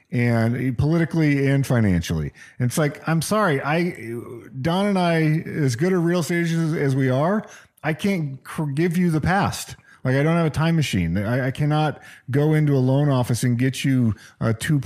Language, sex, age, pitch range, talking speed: English, male, 40-59, 120-160 Hz, 190 wpm